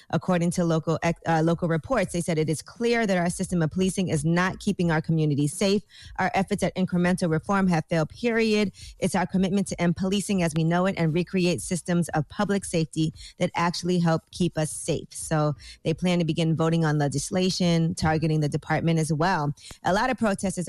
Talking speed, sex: 200 wpm, female